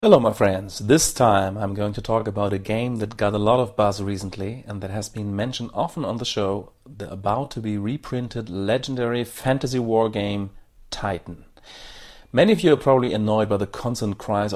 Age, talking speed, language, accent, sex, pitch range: 40-59, 185 wpm, English, German, male, 100-125 Hz